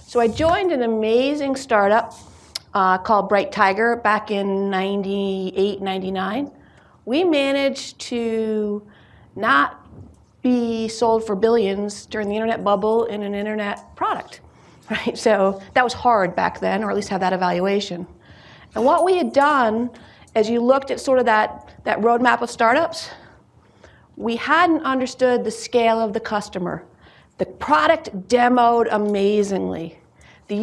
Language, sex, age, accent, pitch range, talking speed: English, female, 40-59, American, 210-275 Hz, 140 wpm